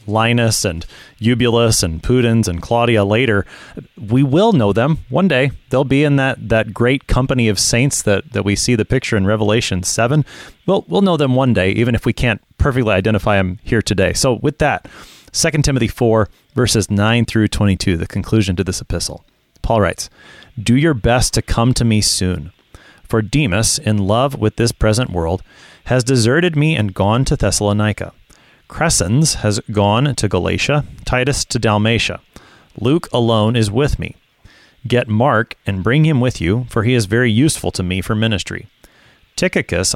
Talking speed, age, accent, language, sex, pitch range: 175 wpm, 30-49, American, English, male, 100-130 Hz